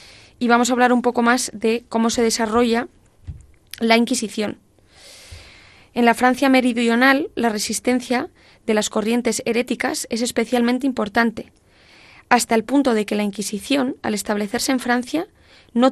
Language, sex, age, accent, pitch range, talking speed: Spanish, female, 20-39, Spanish, 220-260 Hz, 145 wpm